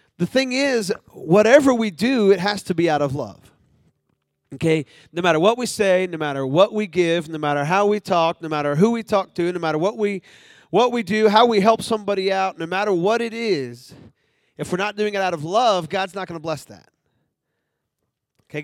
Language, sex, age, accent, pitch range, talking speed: English, male, 40-59, American, 155-200 Hz, 215 wpm